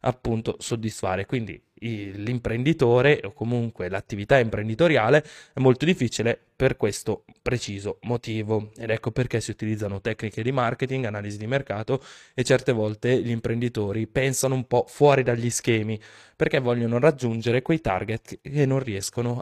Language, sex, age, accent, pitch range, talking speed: Italian, male, 20-39, native, 110-130 Hz, 140 wpm